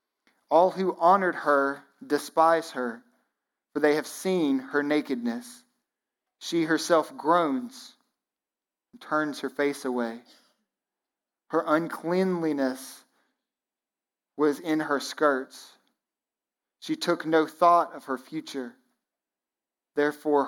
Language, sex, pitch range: English, male, 135-170 Hz